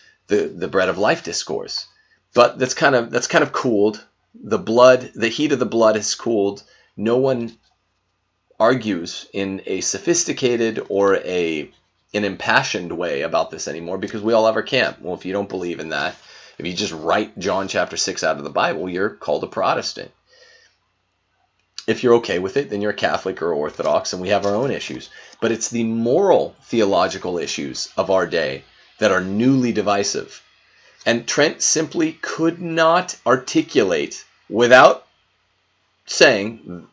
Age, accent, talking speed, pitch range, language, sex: 30-49, American, 165 wpm, 100-150 Hz, English, male